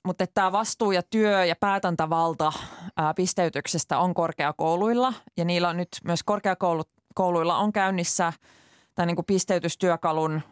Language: Finnish